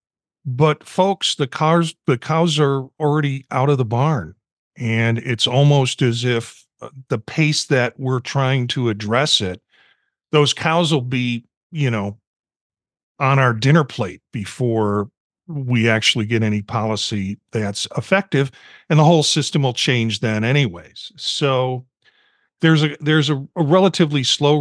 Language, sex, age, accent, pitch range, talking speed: English, male, 50-69, American, 120-150 Hz, 145 wpm